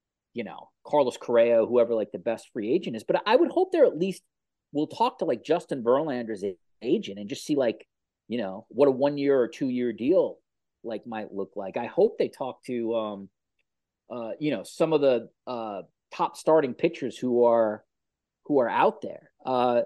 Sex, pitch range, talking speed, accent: male, 140-215 Hz, 200 wpm, American